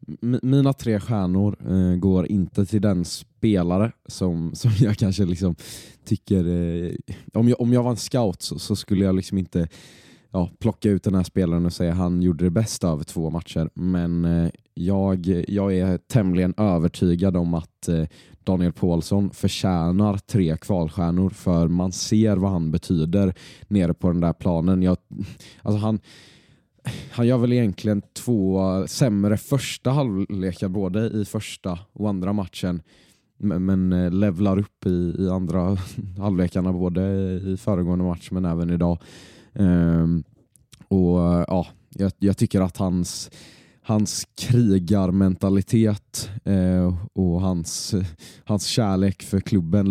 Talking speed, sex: 140 wpm, male